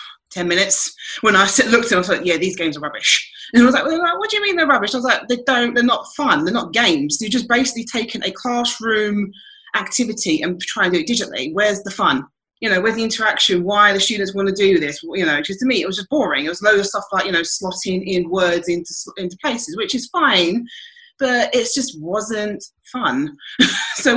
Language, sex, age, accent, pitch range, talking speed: English, female, 30-49, British, 190-260 Hz, 235 wpm